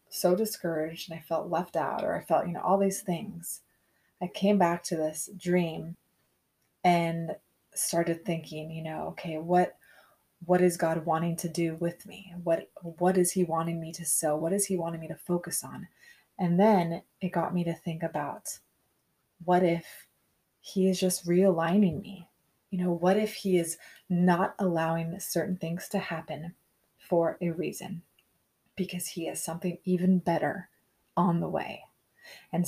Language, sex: English, female